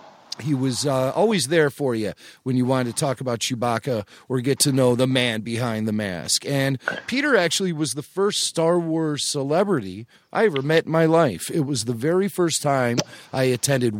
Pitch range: 130-170 Hz